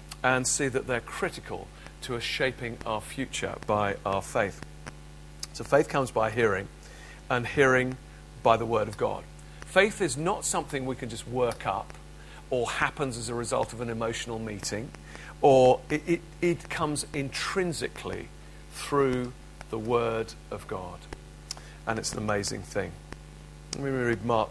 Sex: male